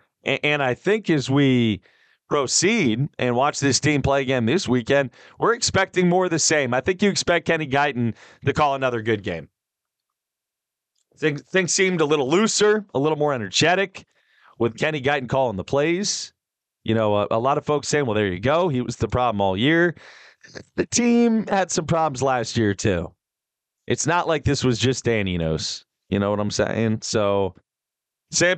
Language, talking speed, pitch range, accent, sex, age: English, 180 wpm, 110-150 Hz, American, male, 30-49